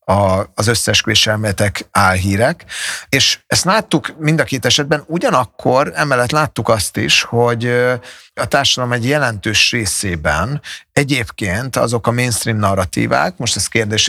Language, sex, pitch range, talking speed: Hungarian, male, 110-140 Hz, 125 wpm